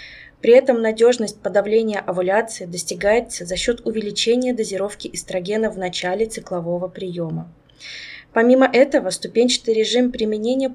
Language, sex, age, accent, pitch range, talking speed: Russian, female, 20-39, native, 195-250 Hz, 110 wpm